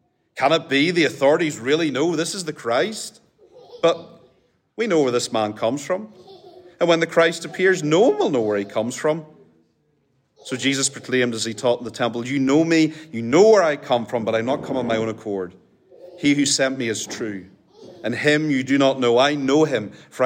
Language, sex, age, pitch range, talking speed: English, male, 40-59, 110-155 Hz, 220 wpm